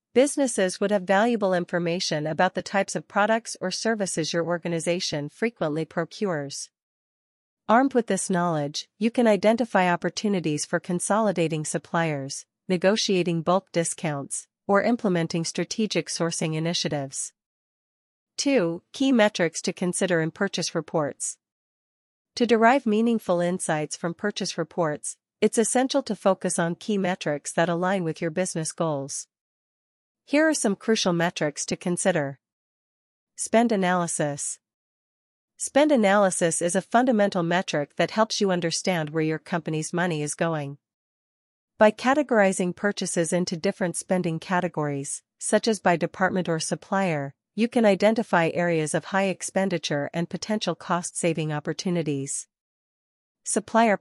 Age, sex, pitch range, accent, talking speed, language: 40-59, female, 165-205 Hz, American, 125 wpm, English